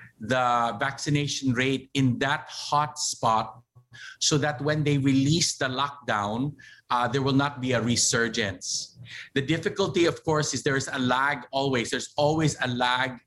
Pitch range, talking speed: 125-150 Hz, 160 wpm